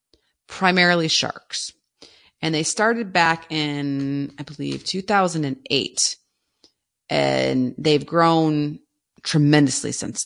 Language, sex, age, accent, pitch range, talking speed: English, female, 30-49, American, 145-180 Hz, 90 wpm